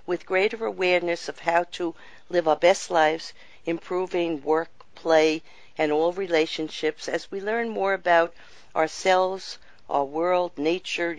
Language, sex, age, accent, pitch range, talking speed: English, female, 50-69, American, 165-205 Hz, 135 wpm